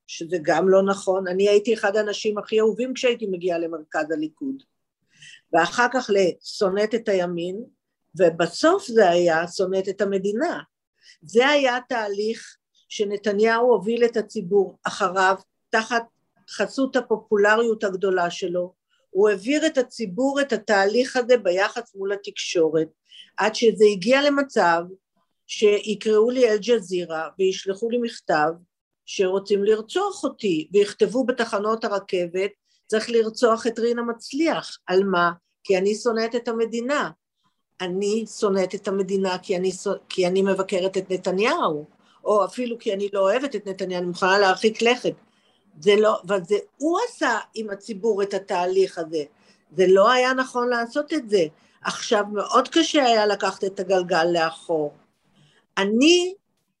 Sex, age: female, 50-69